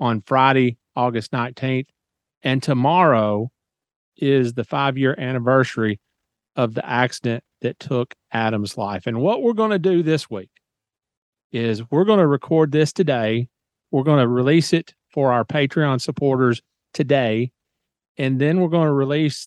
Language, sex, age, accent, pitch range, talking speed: English, male, 40-59, American, 120-140 Hz, 150 wpm